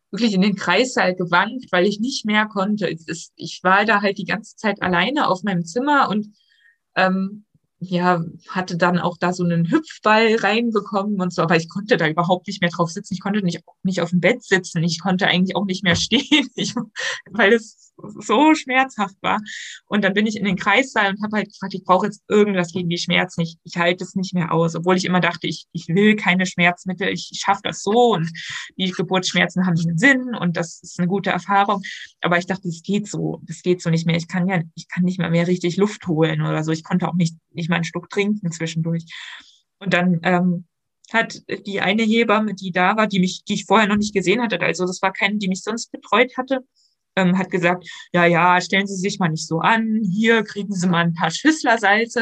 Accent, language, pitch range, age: German, German, 175-205 Hz, 20-39